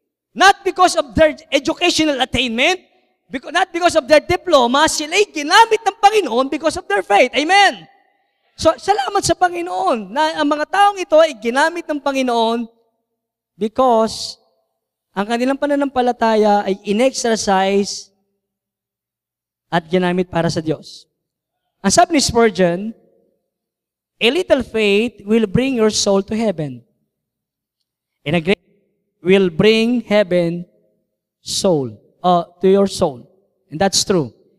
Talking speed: 125 wpm